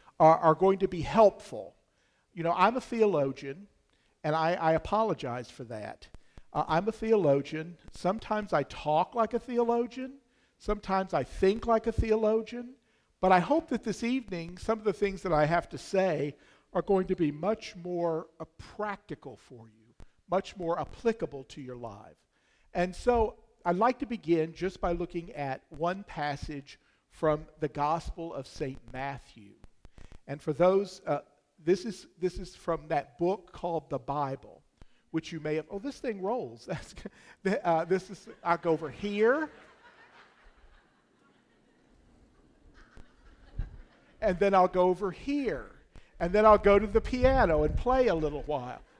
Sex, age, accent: male, 50-69, American